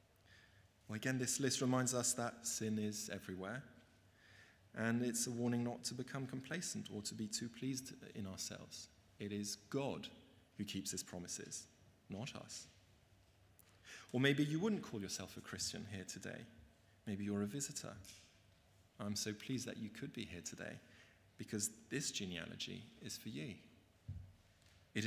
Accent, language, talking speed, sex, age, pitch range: British, English, 155 wpm, male, 30-49, 95-115 Hz